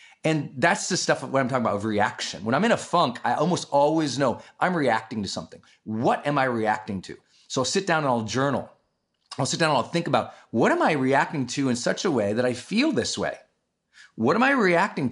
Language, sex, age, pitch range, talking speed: English, male, 30-49, 135-190 Hz, 240 wpm